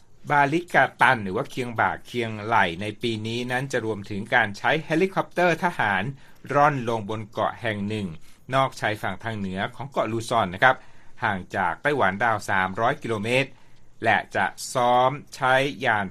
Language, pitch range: Thai, 105-130 Hz